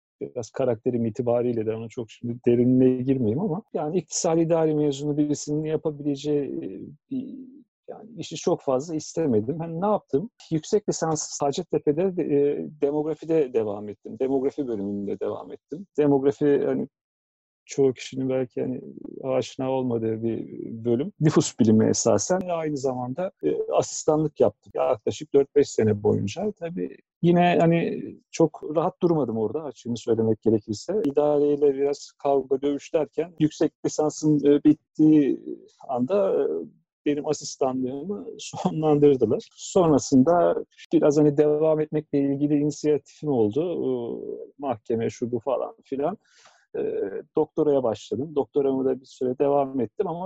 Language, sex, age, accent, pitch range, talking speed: Turkish, male, 40-59, native, 130-170 Hz, 120 wpm